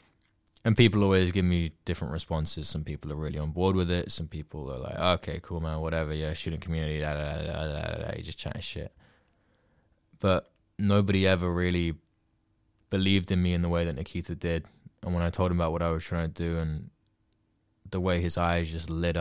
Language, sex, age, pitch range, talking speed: English, male, 20-39, 80-100 Hz, 200 wpm